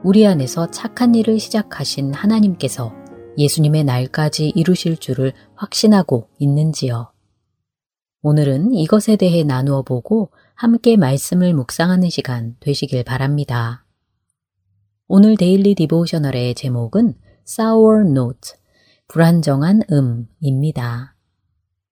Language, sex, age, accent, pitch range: Korean, female, 30-49, native, 125-195 Hz